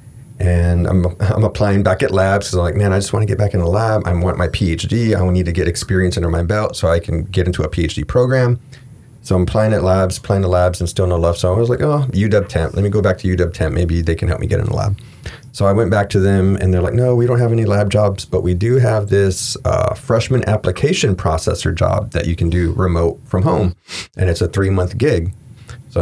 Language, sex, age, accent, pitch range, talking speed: English, male, 30-49, American, 90-115 Hz, 265 wpm